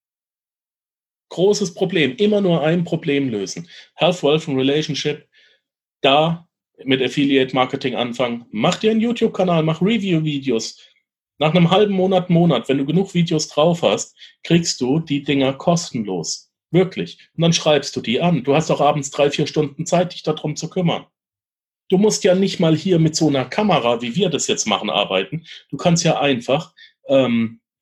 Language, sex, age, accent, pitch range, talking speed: German, male, 40-59, German, 135-185 Hz, 165 wpm